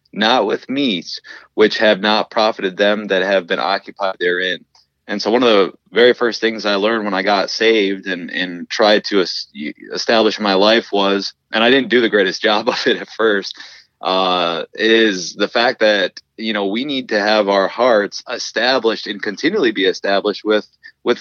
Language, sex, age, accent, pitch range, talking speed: English, male, 30-49, American, 95-115 Hz, 185 wpm